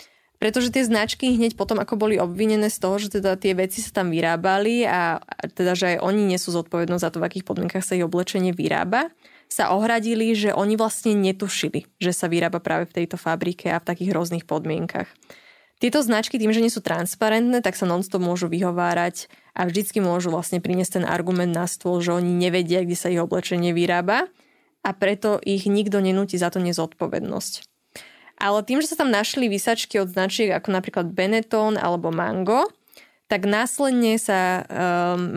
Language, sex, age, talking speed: Slovak, female, 20-39, 180 wpm